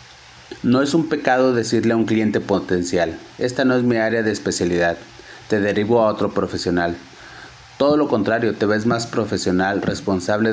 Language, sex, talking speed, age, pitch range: Spanish, male, 165 wpm, 30-49, 100-120 Hz